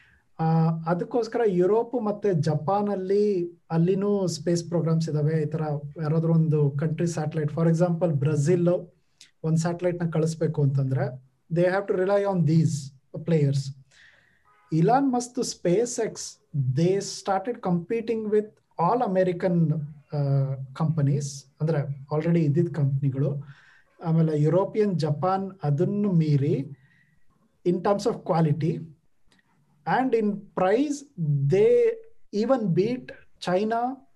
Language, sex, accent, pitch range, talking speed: Kannada, male, native, 150-190 Hz, 100 wpm